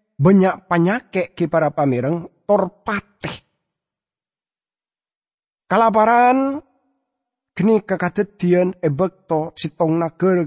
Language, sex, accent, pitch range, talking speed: English, male, Indonesian, 145-215 Hz, 75 wpm